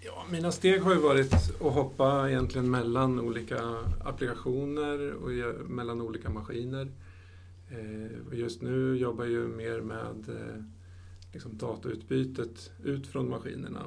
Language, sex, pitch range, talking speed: Swedish, male, 90-120 Hz, 120 wpm